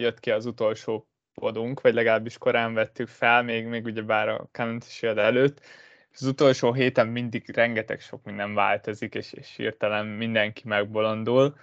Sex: male